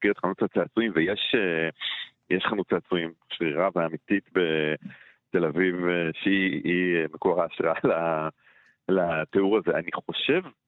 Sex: male